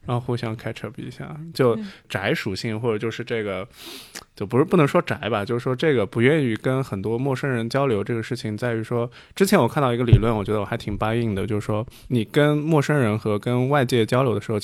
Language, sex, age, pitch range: Chinese, male, 20-39, 110-130 Hz